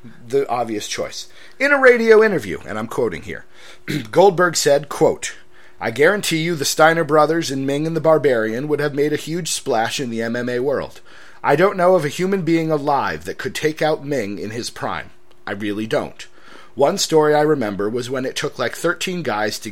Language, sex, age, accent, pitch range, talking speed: English, male, 40-59, American, 130-180 Hz, 200 wpm